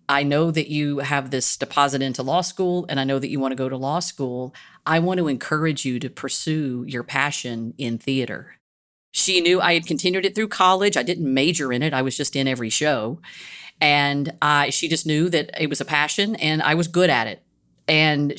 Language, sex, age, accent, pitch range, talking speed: English, female, 40-59, American, 130-165 Hz, 220 wpm